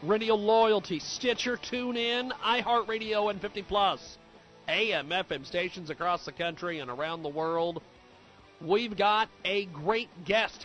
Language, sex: English, male